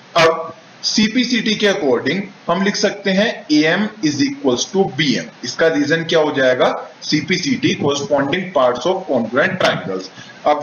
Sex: male